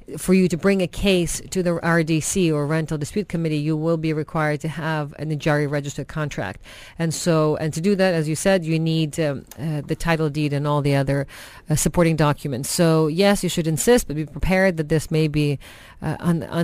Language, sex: English, female